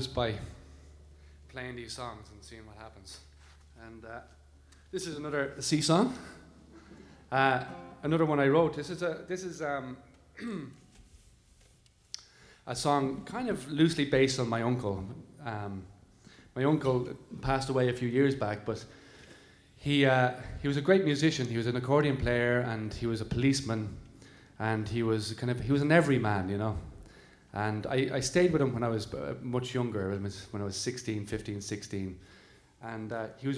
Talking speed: 170 wpm